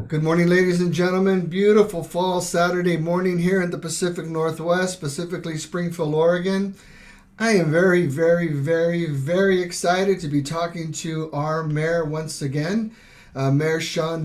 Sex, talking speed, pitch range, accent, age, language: male, 145 wpm, 145-175 Hz, American, 50-69, English